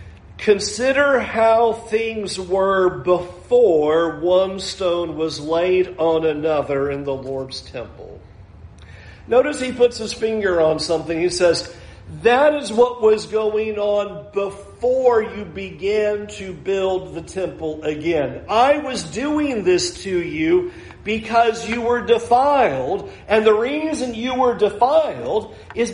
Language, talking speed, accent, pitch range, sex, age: English, 125 wpm, American, 175-235 Hz, male, 50-69